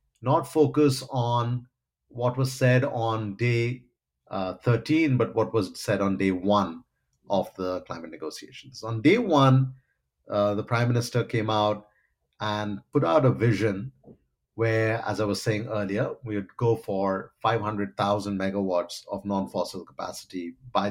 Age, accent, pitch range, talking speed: 50-69, Indian, 100-125 Hz, 145 wpm